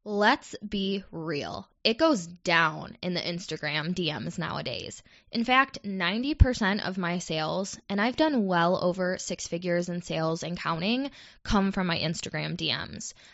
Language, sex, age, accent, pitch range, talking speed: English, female, 10-29, American, 175-225 Hz, 150 wpm